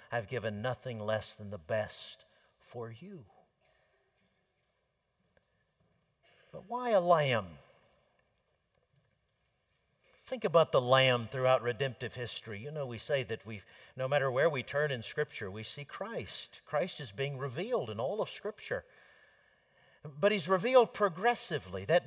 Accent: American